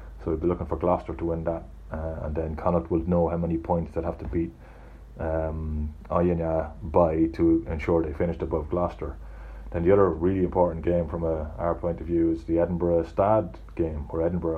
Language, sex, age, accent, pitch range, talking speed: English, male, 30-49, Irish, 80-85 Hz, 210 wpm